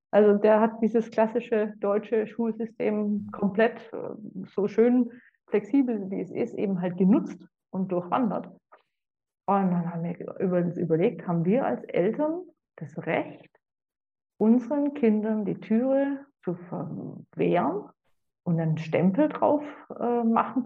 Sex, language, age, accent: female, German, 50-69, German